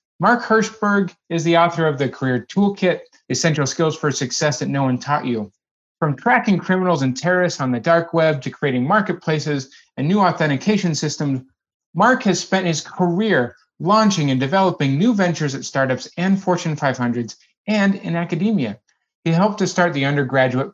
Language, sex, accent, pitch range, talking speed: English, male, American, 130-180 Hz, 170 wpm